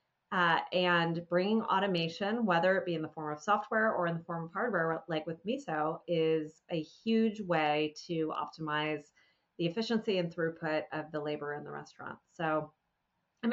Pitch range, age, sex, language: 155-180 Hz, 30-49, female, English